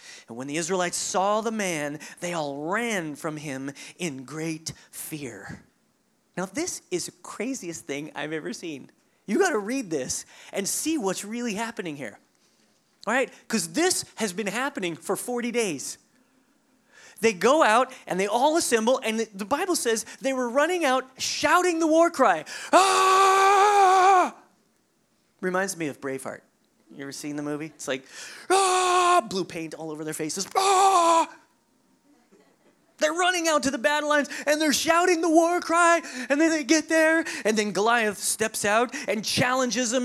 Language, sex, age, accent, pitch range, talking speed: English, male, 30-49, American, 195-325 Hz, 165 wpm